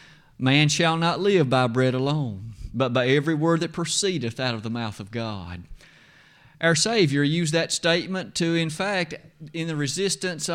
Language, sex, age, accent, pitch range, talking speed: English, male, 30-49, American, 130-175 Hz, 170 wpm